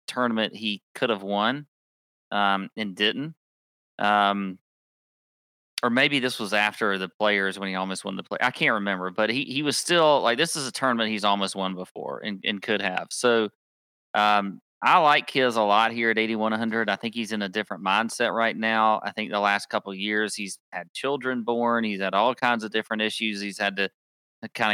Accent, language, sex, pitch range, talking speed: American, English, male, 105-135 Hz, 205 wpm